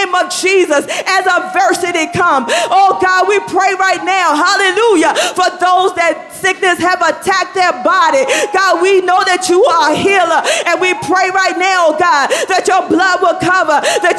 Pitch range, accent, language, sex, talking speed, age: 350-380 Hz, American, English, female, 170 wpm, 40-59